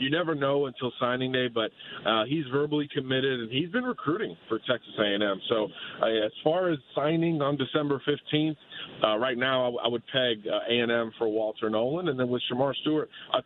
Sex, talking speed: male, 200 wpm